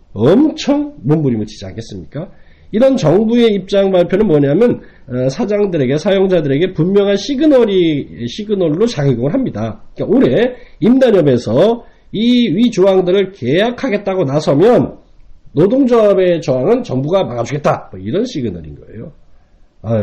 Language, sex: Korean, male